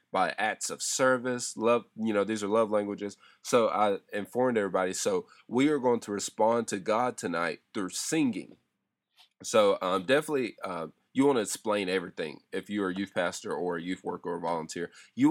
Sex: male